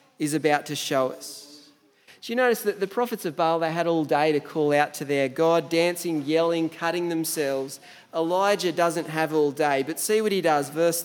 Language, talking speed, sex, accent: English, 205 wpm, male, Australian